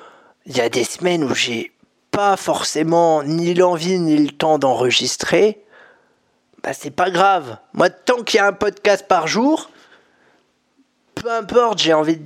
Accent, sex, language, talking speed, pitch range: French, male, French, 165 wpm, 170-230 Hz